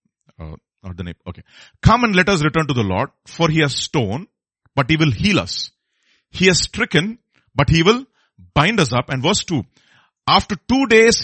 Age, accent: 40-59, Indian